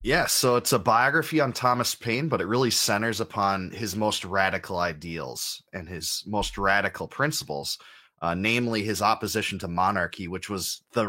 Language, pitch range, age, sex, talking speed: English, 95-110 Hz, 30-49, male, 170 wpm